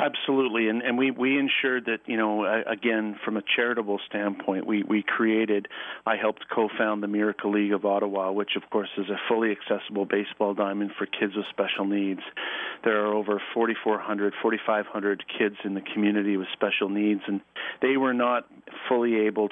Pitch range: 100-110 Hz